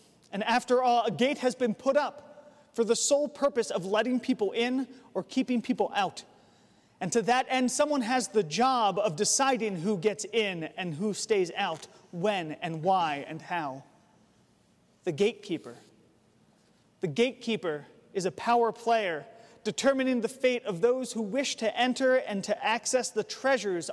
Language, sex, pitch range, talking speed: English, male, 190-245 Hz, 165 wpm